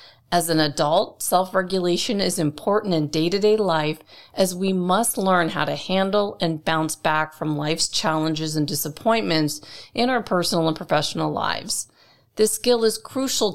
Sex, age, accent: female, 40-59, American